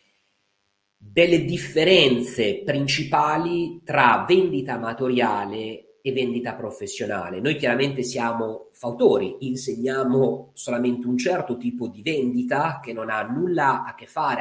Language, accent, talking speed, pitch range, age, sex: Italian, native, 110 wpm, 120-170 Hz, 40-59, male